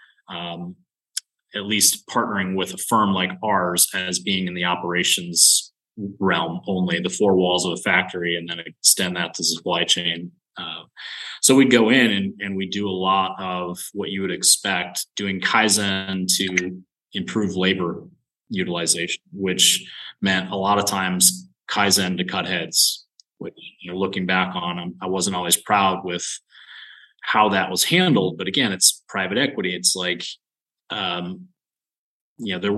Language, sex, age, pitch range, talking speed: English, male, 30-49, 90-105 Hz, 160 wpm